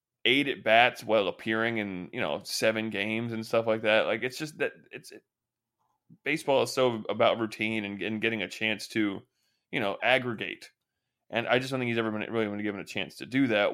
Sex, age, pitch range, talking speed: male, 20-39, 100-115 Hz, 215 wpm